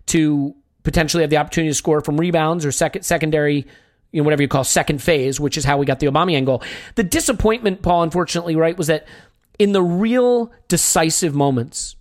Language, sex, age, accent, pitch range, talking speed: English, male, 40-59, American, 135-165 Hz, 195 wpm